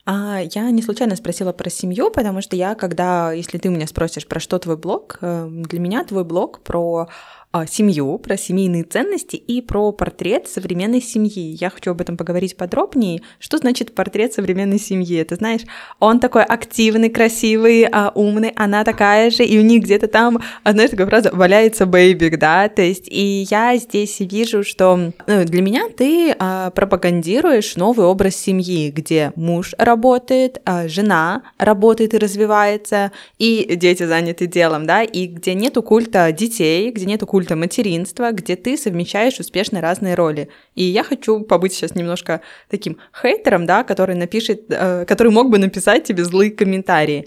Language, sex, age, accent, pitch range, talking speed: Russian, female, 20-39, native, 175-220 Hz, 160 wpm